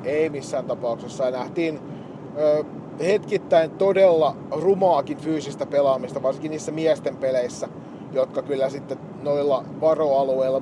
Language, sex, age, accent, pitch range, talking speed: Finnish, male, 30-49, native, 130-155 Hz, 115 wpm